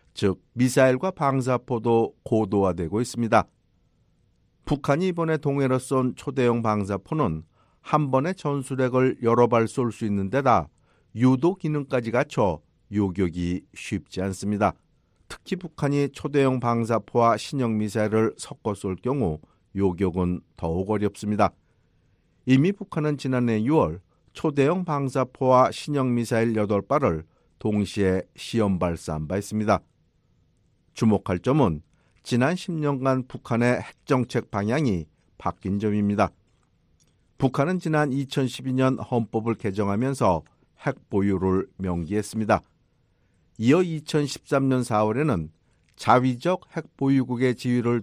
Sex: male